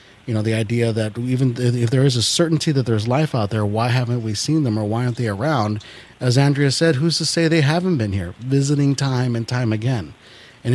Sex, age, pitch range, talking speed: male, 30-49, 115-140 Hz, 235 wpm